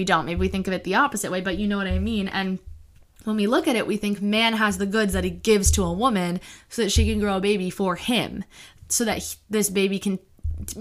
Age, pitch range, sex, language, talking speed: 20-39, 185-215 Hz, female, English, 280 wpm